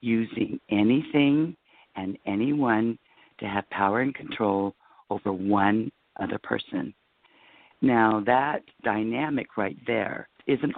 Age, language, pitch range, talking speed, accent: 50-69, English, 105-140 Hz, 105 wpm, American